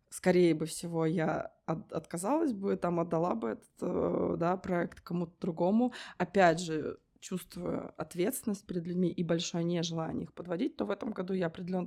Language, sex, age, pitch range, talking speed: Russian, female, 20-39, 175-220 Hz, 165 wpm